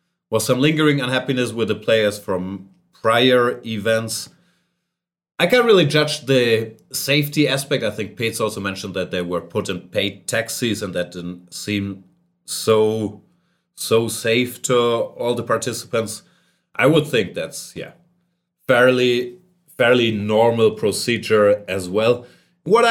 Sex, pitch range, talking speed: male, 105-155 Hz, 135 wpm